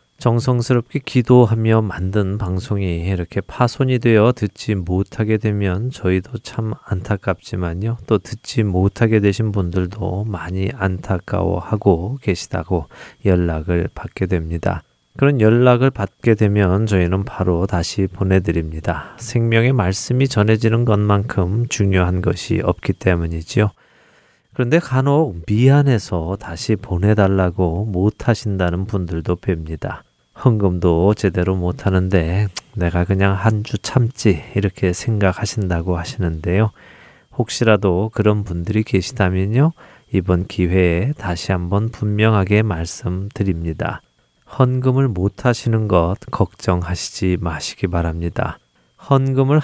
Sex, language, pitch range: male, Korean, 90-115 Hz